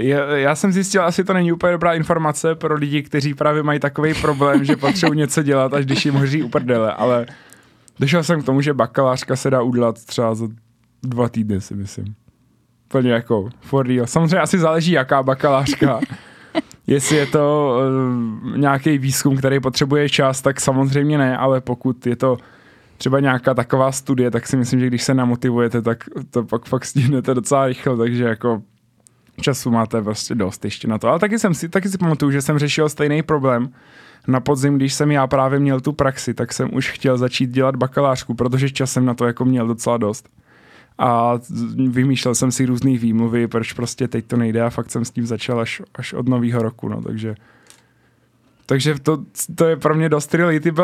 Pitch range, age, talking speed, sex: 120-150 Hz, 20-39, 190 wpm, male